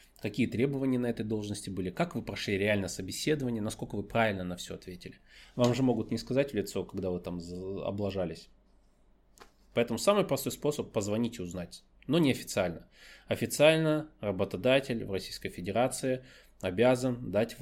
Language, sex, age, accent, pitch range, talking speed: Russian, male, 20-39, native, 95-120 Hz, 155 wpm